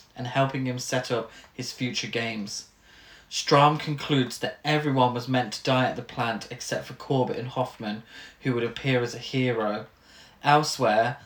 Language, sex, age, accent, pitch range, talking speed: English, male, 20-39, British, 120-135 Hz, 165 wpm